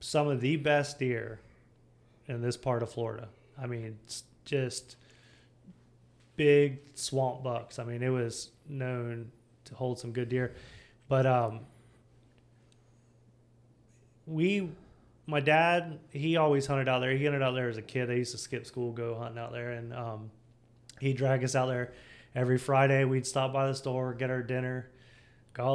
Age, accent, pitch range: 20-39, American, 120-135 Hz